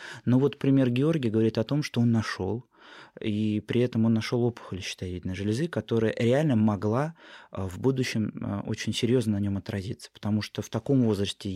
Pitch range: 105-130 Hz